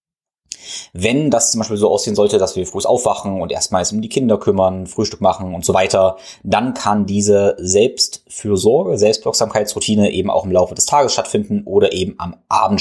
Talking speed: 180 wpm